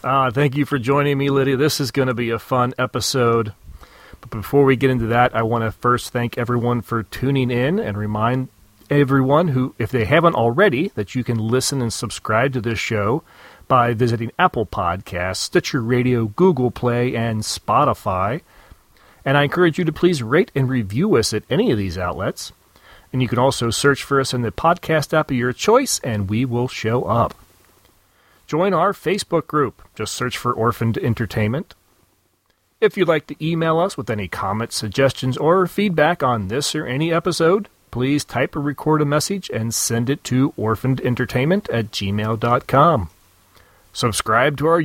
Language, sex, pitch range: English, male, 115-150 Hz